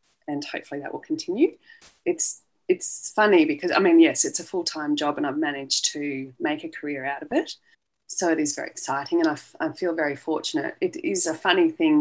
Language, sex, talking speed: English, female, 220 wpm